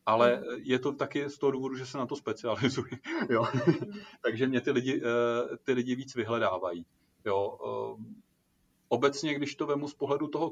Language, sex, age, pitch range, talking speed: Czech, male, 30-49, 115-140 Hz, 160 wpm